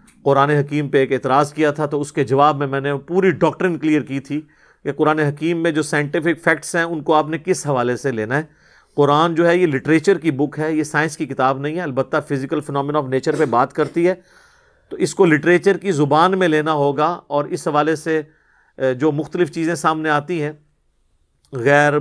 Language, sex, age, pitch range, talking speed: Urdu, male, 40-59, 145-175 Hz, 220 wpm